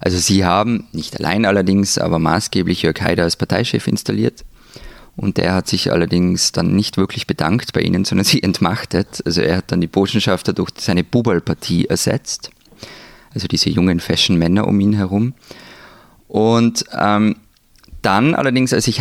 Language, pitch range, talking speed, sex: German, 90-110 Hz, 160 wpm, male